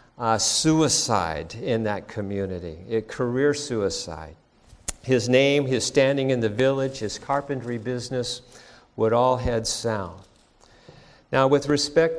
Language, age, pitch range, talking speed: English, 50-69, 115-140 Hz, 120 wpm